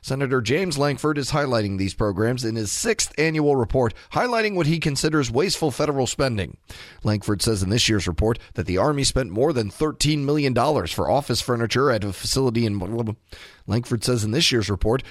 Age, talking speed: 30-49, 185 wpm